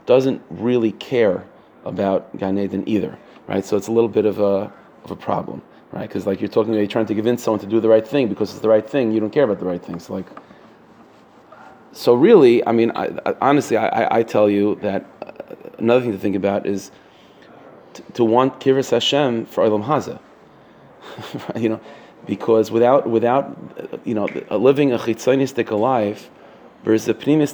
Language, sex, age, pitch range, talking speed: English, male, 30-49, 105-125 Hz, 190 wpm